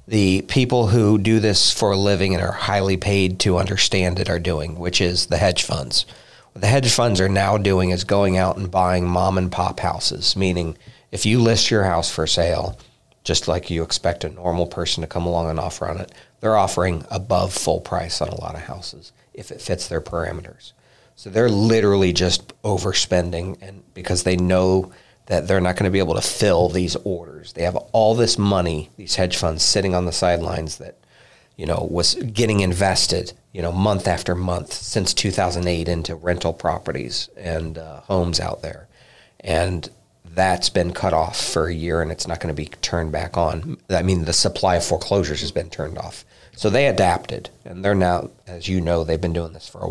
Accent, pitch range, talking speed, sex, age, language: American, 85-100 Hz, 205 wpm, male, 40-59, English